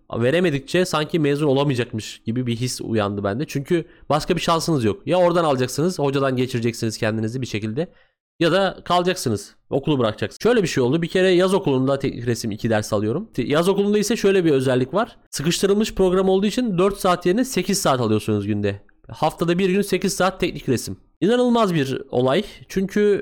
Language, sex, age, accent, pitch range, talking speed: Turkish, male, 30-49, native, 125-185 Hz, 175 wpm